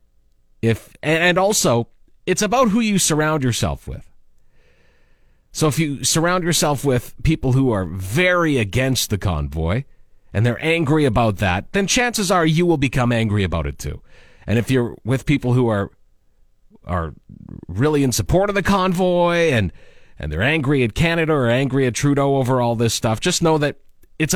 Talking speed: 170 wpm